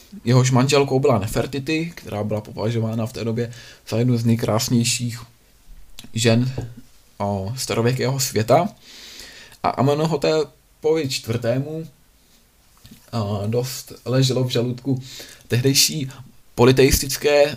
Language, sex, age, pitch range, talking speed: Czech, male, 20-39, 115-135 Hz, 95 wpm